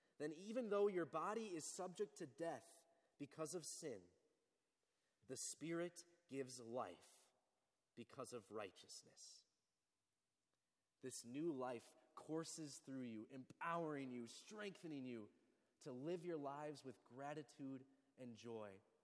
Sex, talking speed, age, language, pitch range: male, 115 wpm, 30-49, English, 115-165 Hz